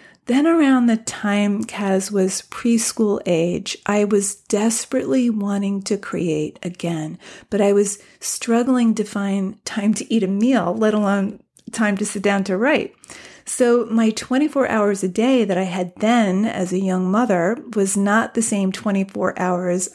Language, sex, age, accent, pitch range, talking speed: English, female, 40-59, American, 195-235 Hz, 160 wpm